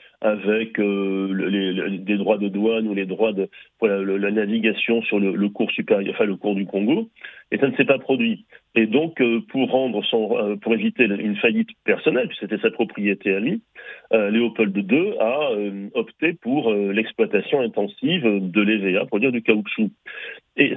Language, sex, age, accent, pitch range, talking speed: French, male, 40-59, French, 100-125 Hz, 195 wpm